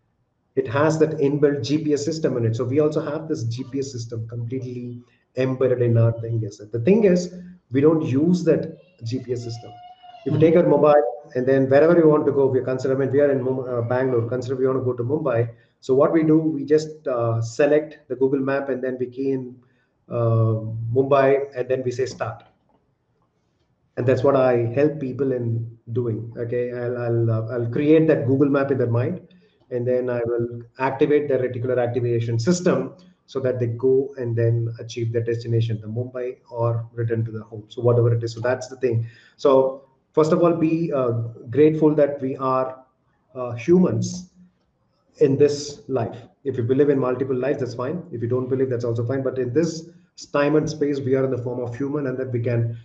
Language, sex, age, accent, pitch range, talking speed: English, male, 30-49, Indian, 120-145 Hz, 200 wpm